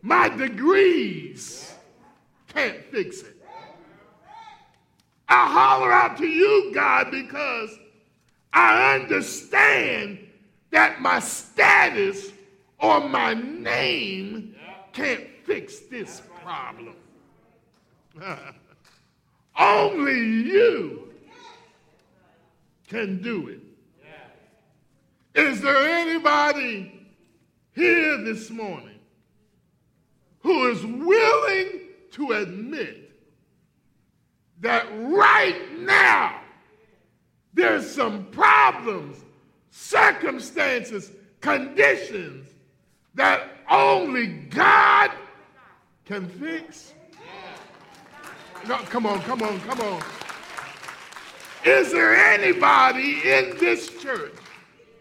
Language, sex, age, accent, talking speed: English, male, 50-69, American, 70 wpm